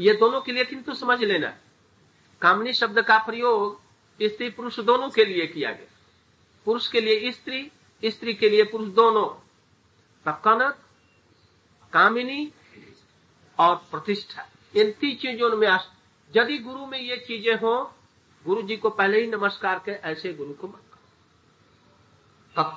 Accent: native